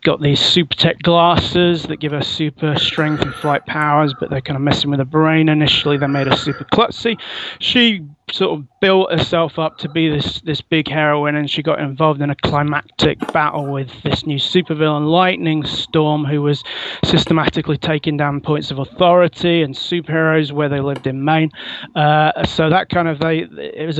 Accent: British